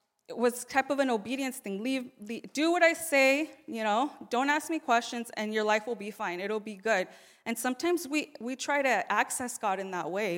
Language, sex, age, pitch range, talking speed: English, female, 20-39, 210-270 Hz, 225 wpm